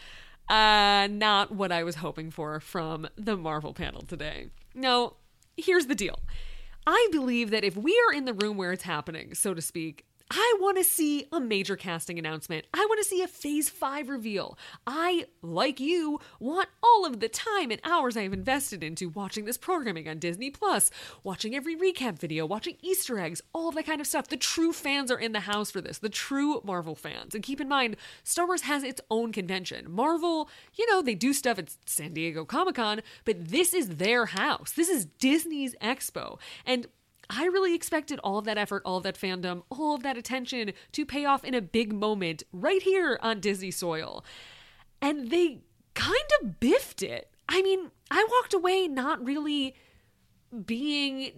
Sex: female